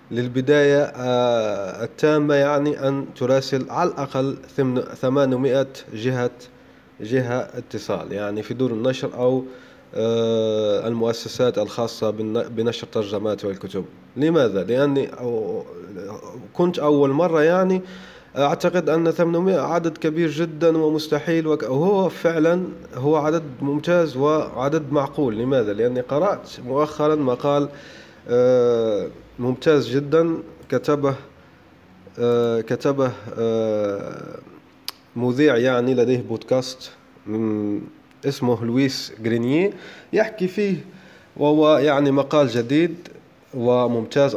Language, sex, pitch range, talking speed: Arabic, male, 120-155 Hz, 90 wpm